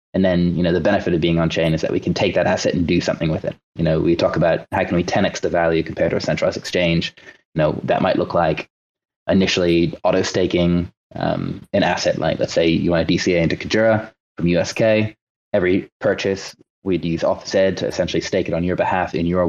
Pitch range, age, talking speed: 85-95 Hz, 20-39, 230 wpm